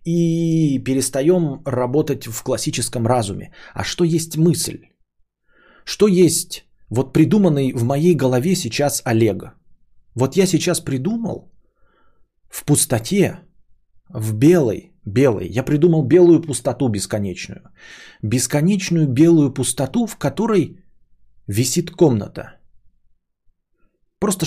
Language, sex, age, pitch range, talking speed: Bulgarian, male, 30-49, 120-170 Hz, 100 wpm